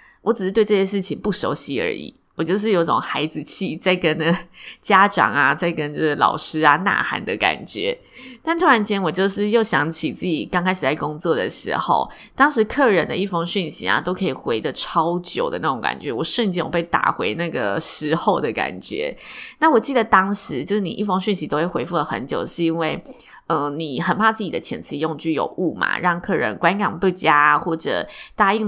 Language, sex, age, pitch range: Chinese, female, 20-39, 165-215 Hz